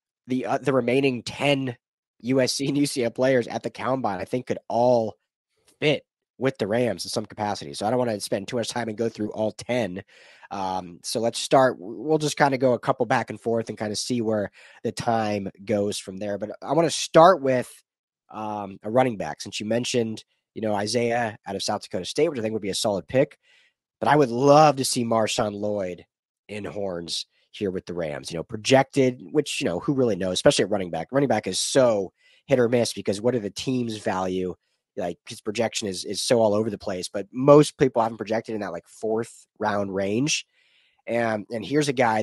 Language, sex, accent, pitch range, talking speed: English, male, American, 105-130 Hz, 220 wpm